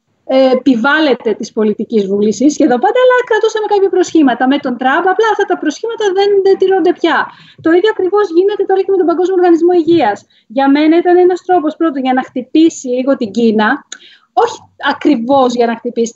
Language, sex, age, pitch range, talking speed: Greek, female, 30-49, 245-330 Hz, 180 wpm